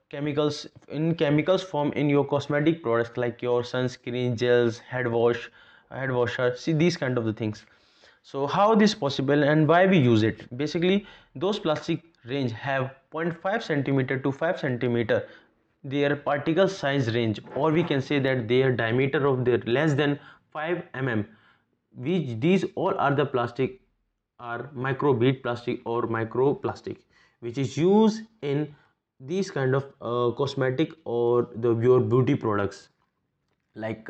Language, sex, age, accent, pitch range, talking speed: English, male, 20-39, Indian, 120-150 Hz, 150 wpm